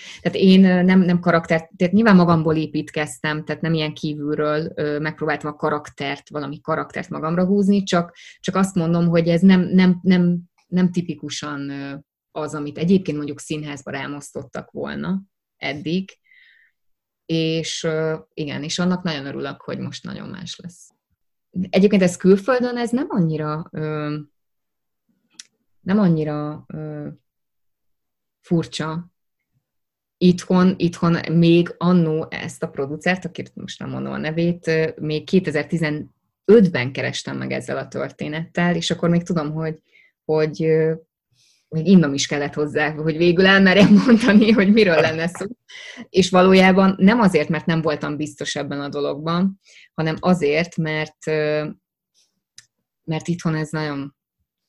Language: Hungarian